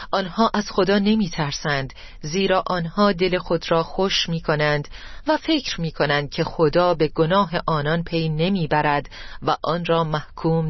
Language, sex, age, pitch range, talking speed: Persian, female, 40-59, 155-200 Hz, 155 wpm